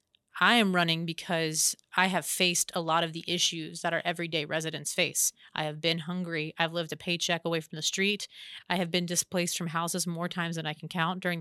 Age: 30-49